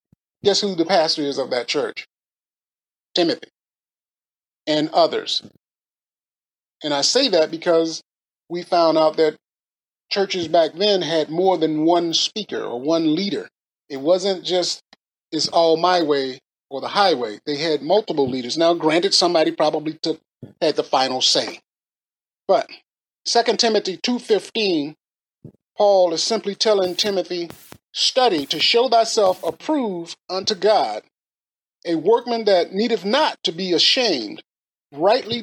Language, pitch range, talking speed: English, 160-215 Hz, 135 wpm